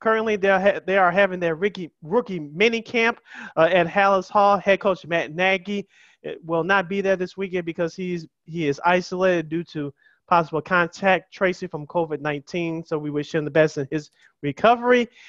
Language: English